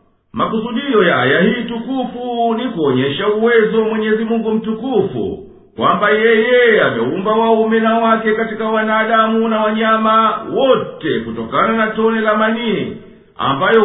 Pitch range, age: 215-230 Hz, 50-69